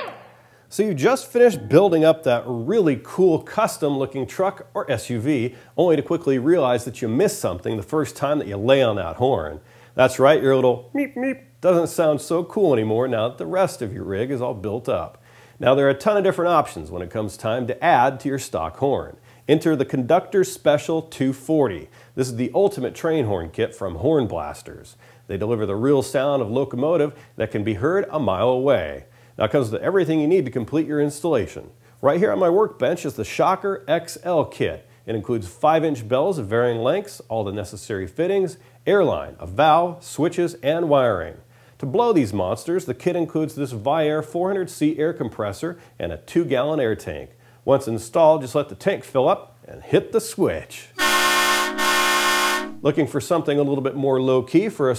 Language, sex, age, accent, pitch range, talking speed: English, male, 40-59, American, 125-170 Hz, 195 wpm